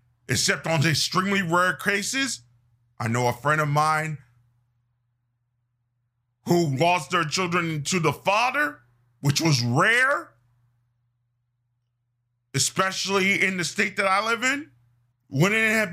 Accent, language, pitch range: American, English, 120-160 Hz